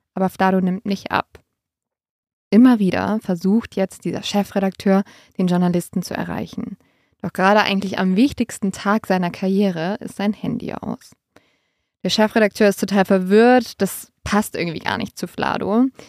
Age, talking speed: 20-39, 145 wpm